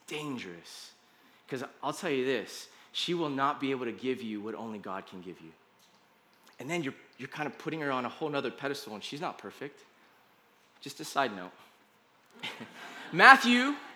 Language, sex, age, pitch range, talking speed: English, male, 20-39, 150-250 Hz, 180 wpm